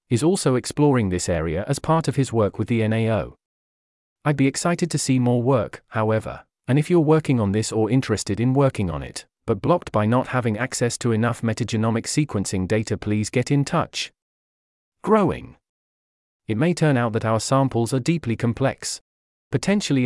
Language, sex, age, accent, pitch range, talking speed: English, male, 30-49, British, 110-145 Hz, 180 wpm